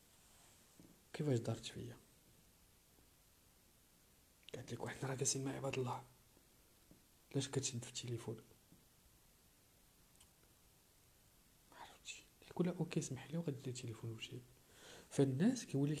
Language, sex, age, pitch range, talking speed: Arabic, male, 50-69, 115-160 Hz, 105 wpm